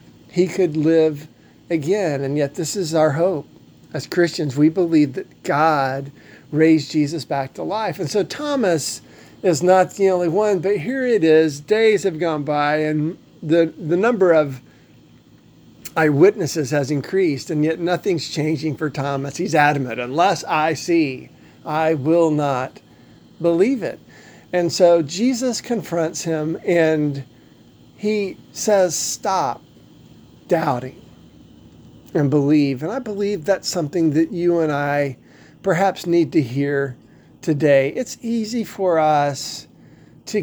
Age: 50-69